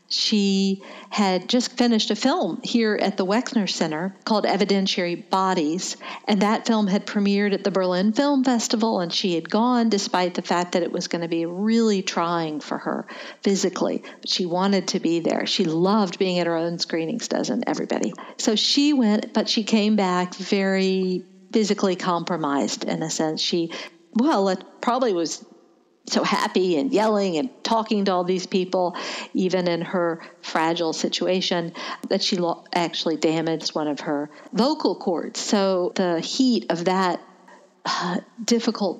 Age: 50-69